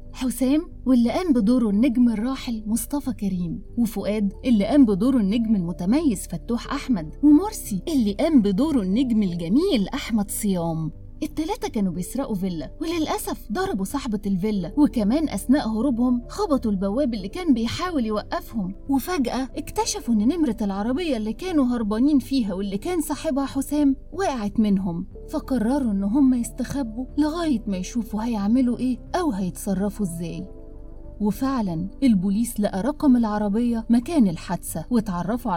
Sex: female